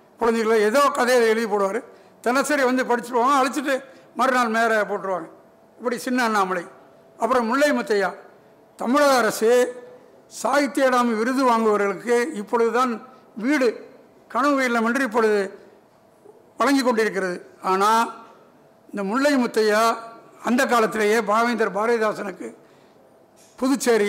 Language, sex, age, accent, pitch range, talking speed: Tamil, male, 60-79, native, 210-250 Hz, 105 wpm